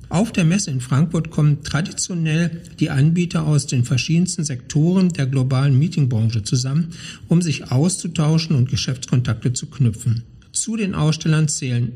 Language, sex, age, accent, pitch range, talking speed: German, male, 60-79, German, 130-160 Hz, 140 wpm